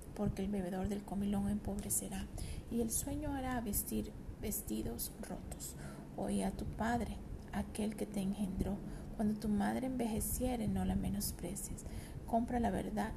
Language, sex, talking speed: English, female, 140 wpm